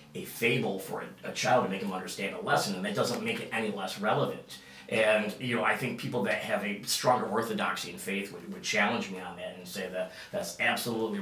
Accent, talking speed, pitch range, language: American, 235 wpm, 100-145 Hz, English